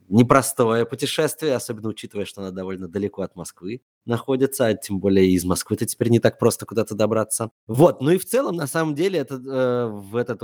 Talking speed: 200 wpm